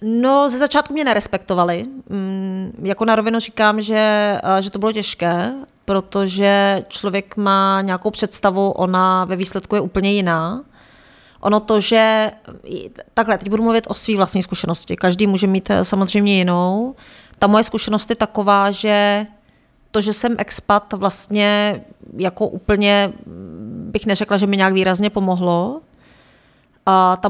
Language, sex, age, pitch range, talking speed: Czech, female, 30-49, 195-215 Hz, 140 wpm